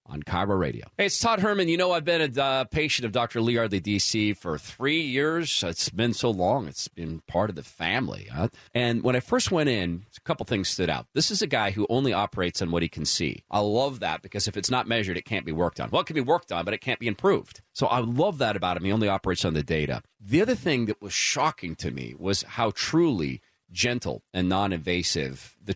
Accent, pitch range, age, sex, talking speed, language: American, 95-135 Hz, 40-59, male, 245 wpm, English